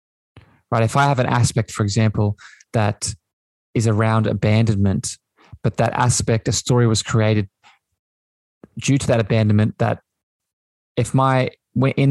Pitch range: 105-125 Hz